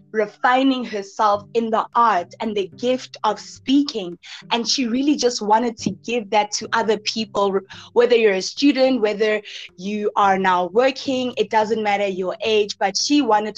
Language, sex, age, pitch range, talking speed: English, female, 20-39, 205-240 Hz, 170 wpm